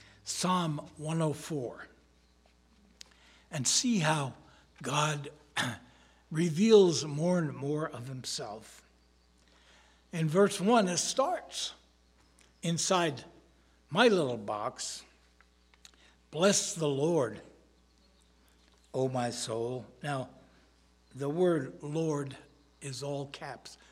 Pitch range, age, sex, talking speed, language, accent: 120-190 Hz, 60-79, male, 85 wpm, English, American